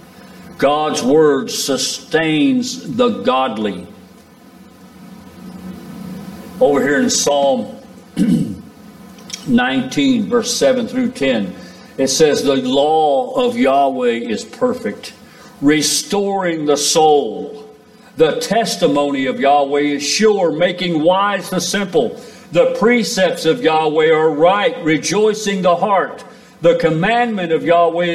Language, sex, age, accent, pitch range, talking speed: English, male, 50-69, American, 160-245 Hz, 100 wpm